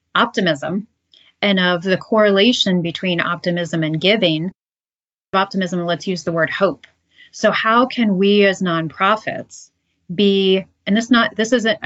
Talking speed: 135 wpm